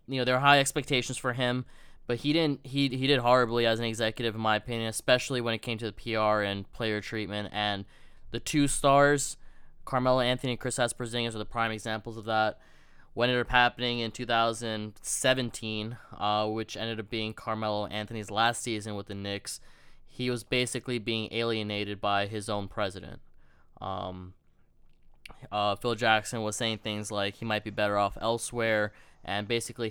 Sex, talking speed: male, 185 wpm